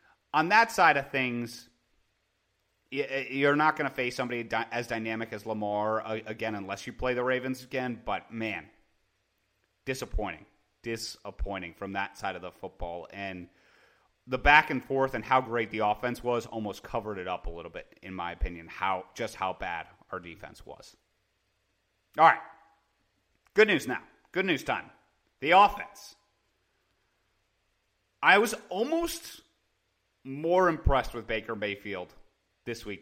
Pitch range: 105-130 Hz